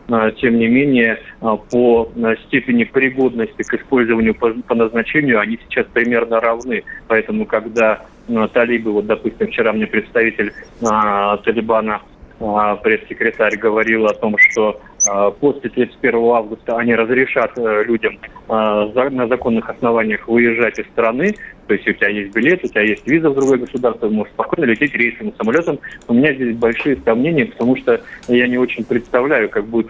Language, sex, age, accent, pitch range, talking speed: Russian, male, 30-49, native, 110-125 Hz, 155 wpm